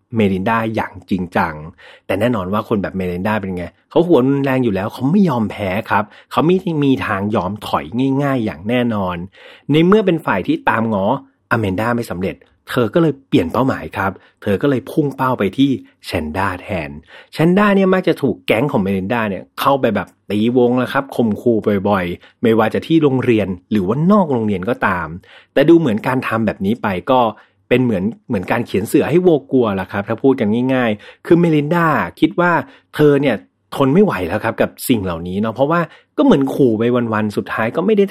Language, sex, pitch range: Thai, male, 105-150 Hz